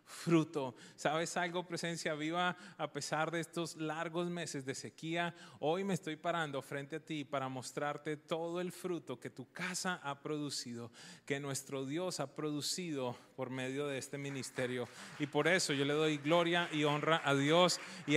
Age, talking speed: 30-49, 170 wpm